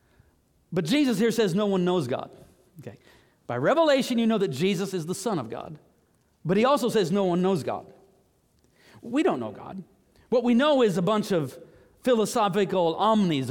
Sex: male